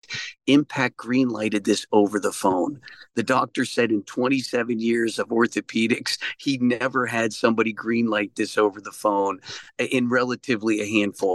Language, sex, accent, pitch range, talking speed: English, male, American, 105-125 Hz, 150 wpm